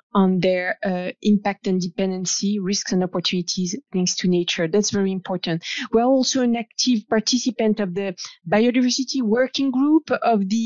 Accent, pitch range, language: French, 195-235 Hz, English